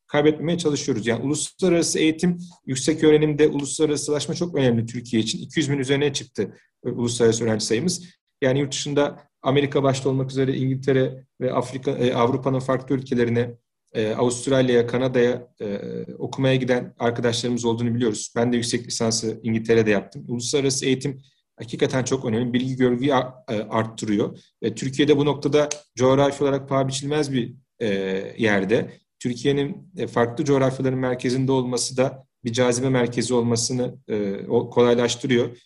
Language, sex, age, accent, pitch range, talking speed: Turkish, male, 40-59, native, 120-140 Hz, 125 wpm